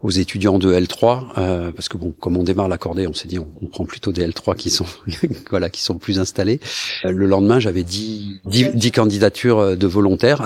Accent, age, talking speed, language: French, 50-69, 210 wpm, French